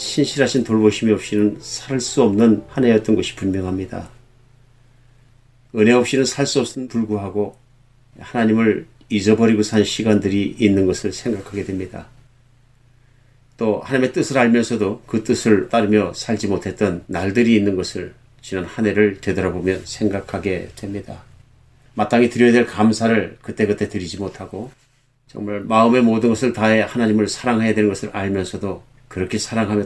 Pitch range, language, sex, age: 100-125 Hz, Korean, male, 40-59